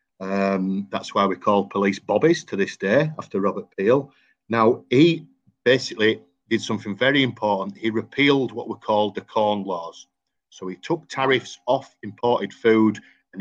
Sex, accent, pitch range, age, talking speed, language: male, British, 100-120 Hz, 40-59, 160 wpm, English